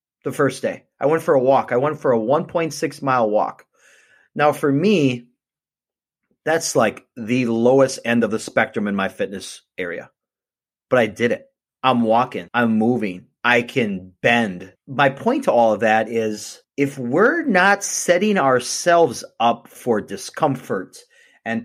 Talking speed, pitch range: 160 wpm, 115-160 Hz